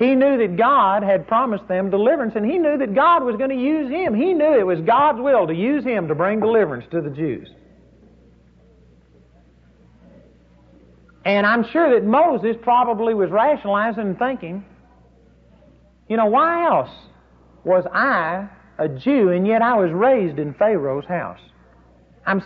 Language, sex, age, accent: English, male, 50-69, American